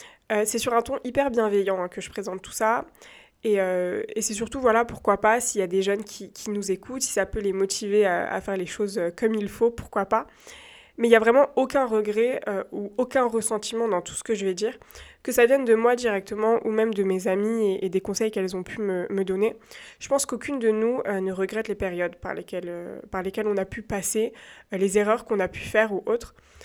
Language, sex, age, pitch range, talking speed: French, female, 20-39, 200-235 Hz, 250 wpm